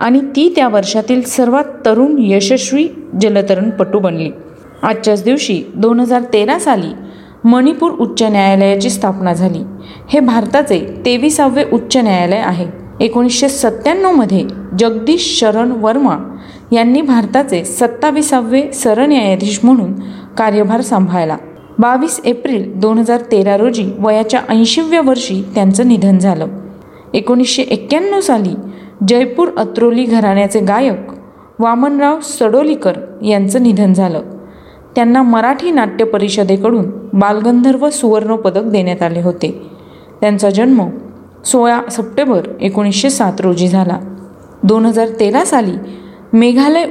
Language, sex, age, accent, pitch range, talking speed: Marathi, female, 30-49, native, 200-255 Hz, 100 wpm